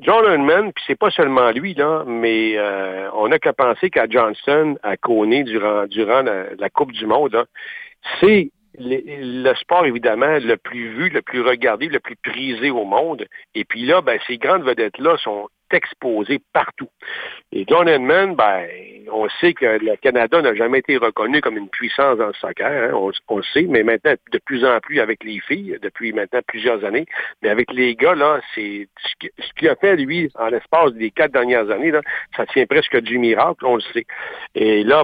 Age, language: 60-79, French